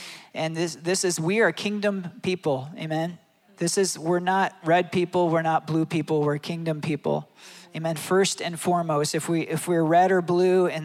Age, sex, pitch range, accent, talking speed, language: 40-59, male, 160-180 Hz, American, 190 wpm, English